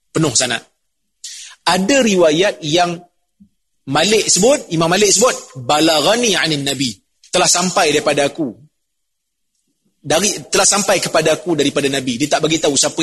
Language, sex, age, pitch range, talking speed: Malay, male, 30-49, 145-180 Hz, 130 wpm